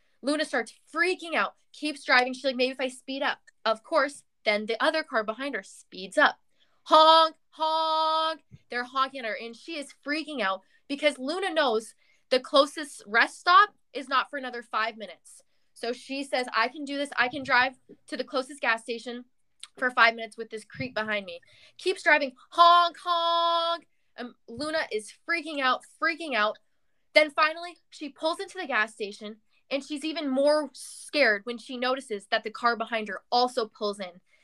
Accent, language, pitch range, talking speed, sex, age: American, English, 230-310 Hz, 180 wpm, female, 20-39